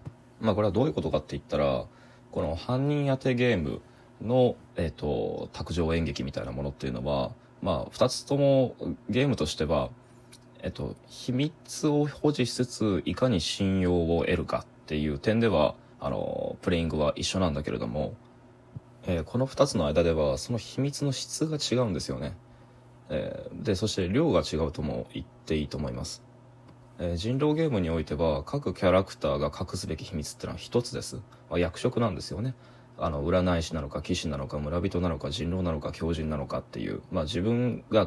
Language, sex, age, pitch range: Japanese, male, 20-39, 80-120 Hz